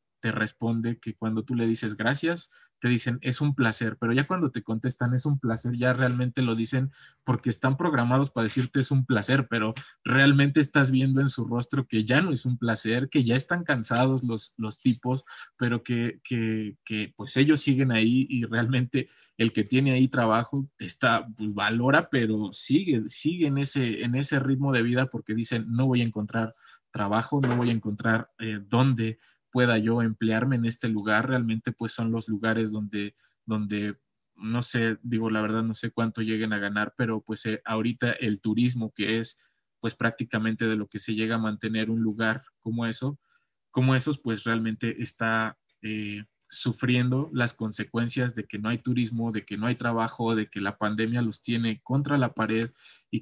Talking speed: 190 wpm